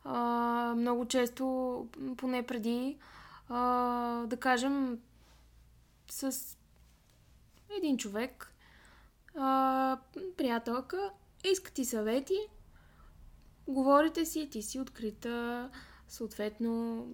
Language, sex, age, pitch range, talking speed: Bulgarian, female, 10-29, 225-275 Hz, 75 wpm